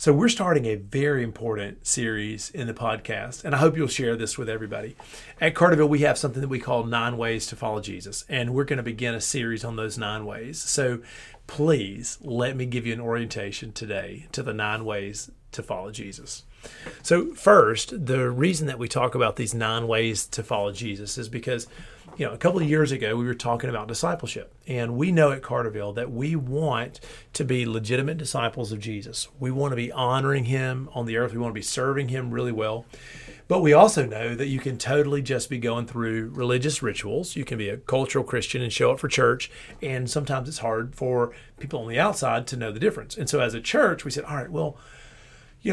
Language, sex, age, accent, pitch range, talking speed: English, male, 40-59, American, 115-140 Hz, 220 wpm